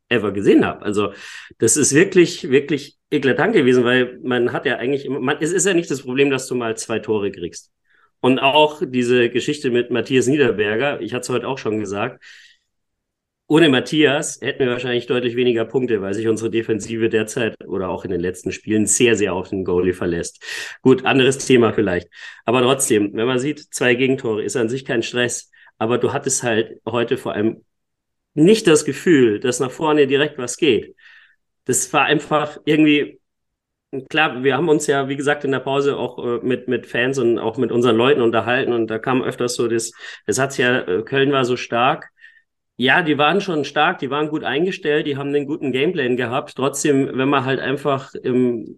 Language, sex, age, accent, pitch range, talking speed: German, male, 40-59, German, 120-150 Hz, 195 wpm